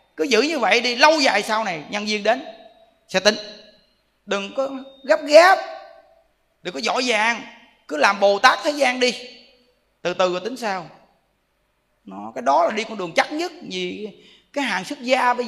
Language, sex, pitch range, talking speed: Vietnamese, male, 205-290 Hz, 190 wpm